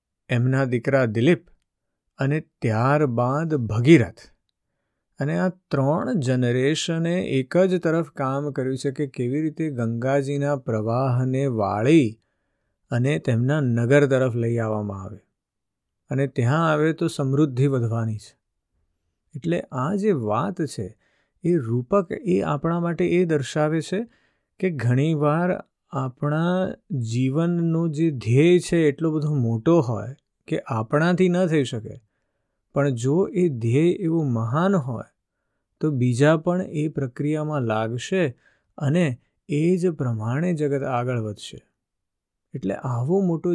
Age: 50-69